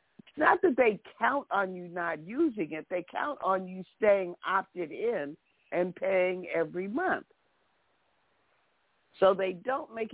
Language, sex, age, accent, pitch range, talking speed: English, female, 60-79, American, 180-225 Hz, 150 wpm